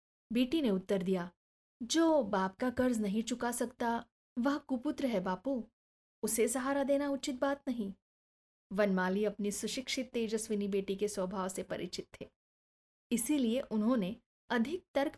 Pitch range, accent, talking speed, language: 190-250 Hz, native, 140 wpm, Hindi